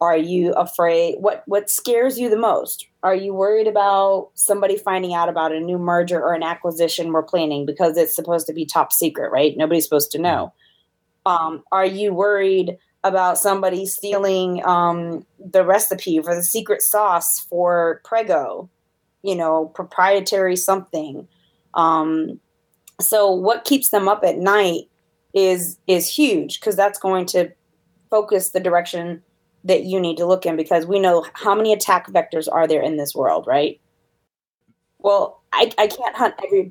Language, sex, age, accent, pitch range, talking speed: English, female, 20-39, American, 170-205 Hz, 165 wpm